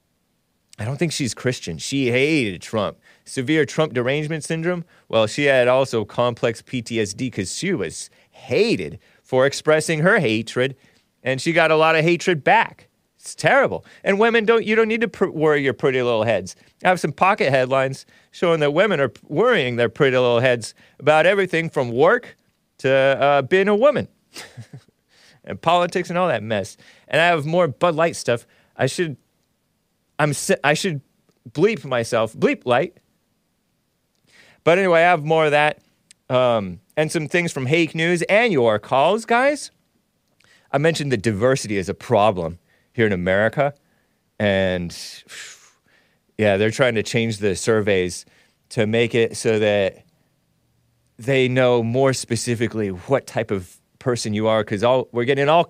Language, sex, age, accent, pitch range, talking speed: English, male, 30-49, American, 115-165 Hz, 160 wpm